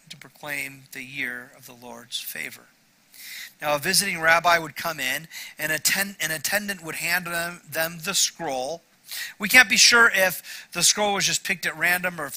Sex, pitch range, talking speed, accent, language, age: male, 140-195 Hz, 190 wpm, American, English, 40-59